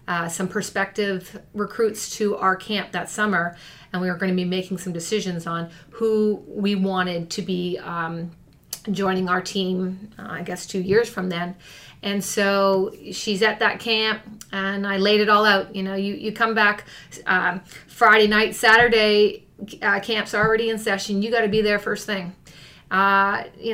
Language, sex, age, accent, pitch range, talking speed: English, female, 30-49, American, 190-215 Hz, 175 wpm